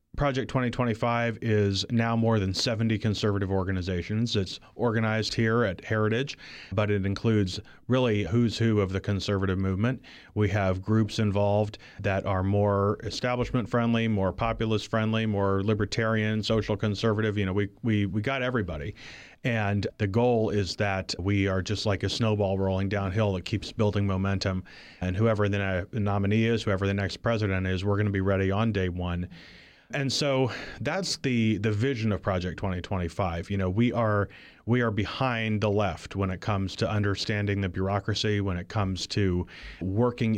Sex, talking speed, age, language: male, 165 wpm, 30-49, English